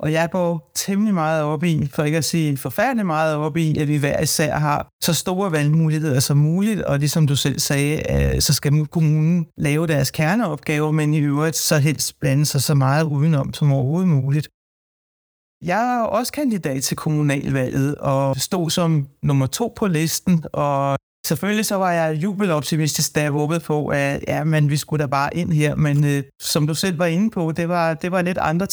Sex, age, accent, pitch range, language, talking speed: male, 60-79, Danish, 150-175 Hz, English, 195 wpm